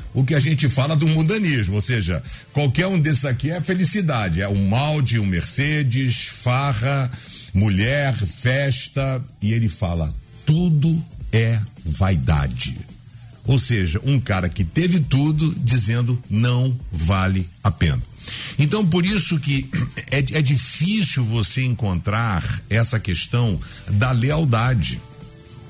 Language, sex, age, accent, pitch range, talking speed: Portuguese, male, 50-69, Brazilian, 110-145 Hz, 125 wpm